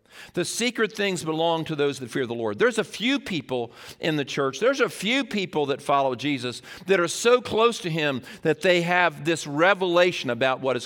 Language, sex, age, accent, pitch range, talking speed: English, male, 50-69, American, 140-180 Hz, 210 wpm